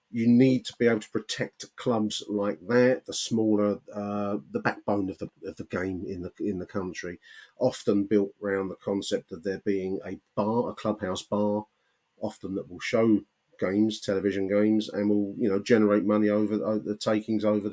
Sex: male